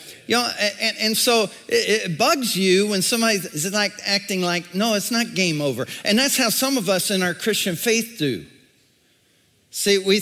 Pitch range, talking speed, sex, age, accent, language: 165-220 Hz, 195 wpm, male, 50-69, American, English